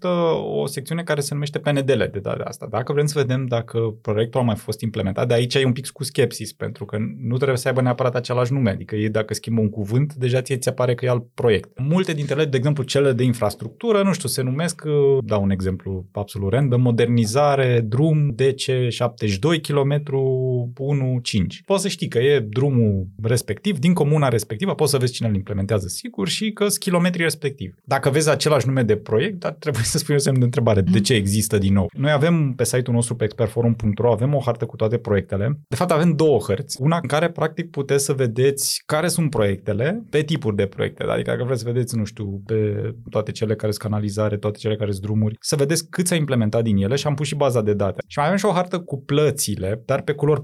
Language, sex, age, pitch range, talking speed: Romanian, male, 20-39, 110-145 Hz, 215 wpm